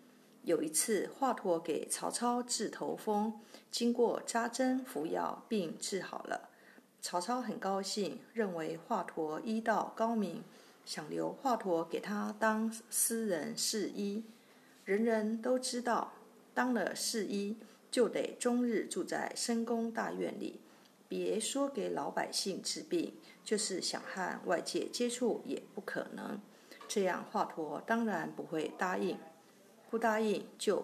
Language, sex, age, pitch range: Chinese, female, 50-69, 210-245 Hz